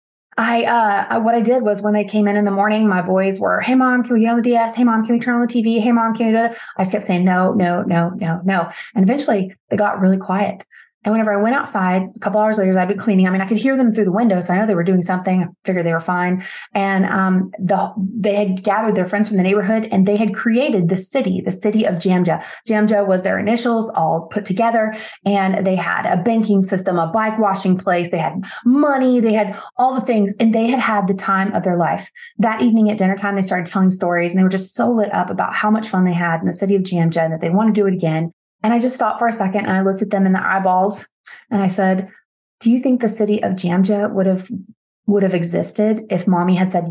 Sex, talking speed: female, 265 wpm